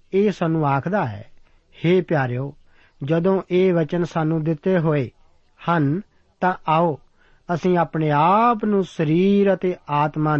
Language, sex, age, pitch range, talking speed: Punjabi, male, 50-69, 140-185 Hz, 125 wpm